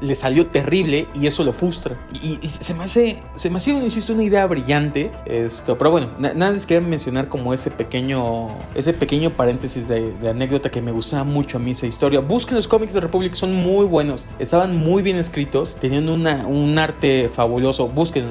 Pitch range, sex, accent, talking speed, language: 130-180 Hz, male, Mexican, 205 wpm, Spanish